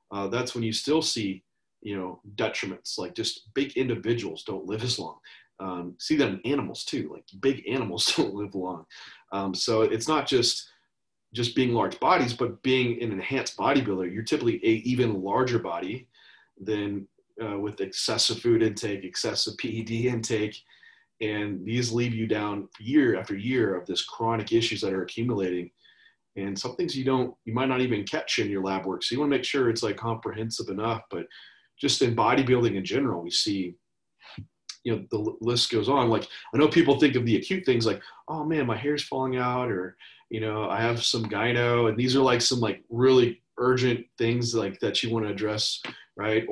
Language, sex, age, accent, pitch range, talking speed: English, male, 30-49, American, 100-125 Hz, 195 wpm